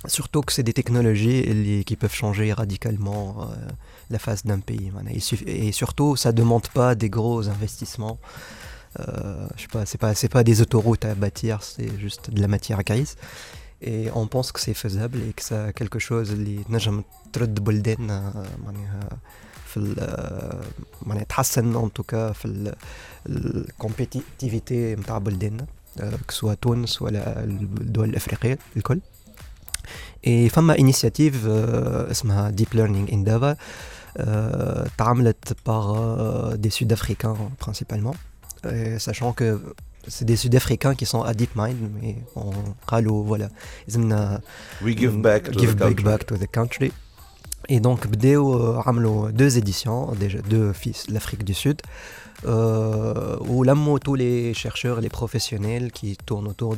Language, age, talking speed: Arabic, 20-39, 130 wpm